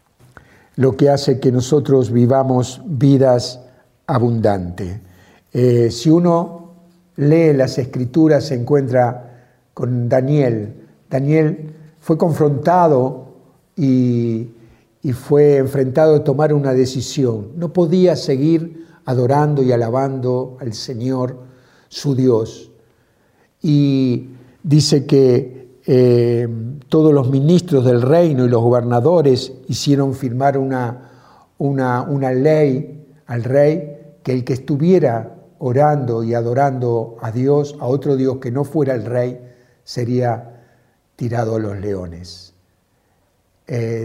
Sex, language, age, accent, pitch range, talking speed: male, Spanish, 60-79, Argentinian, 120-145 Hz, 110 wpm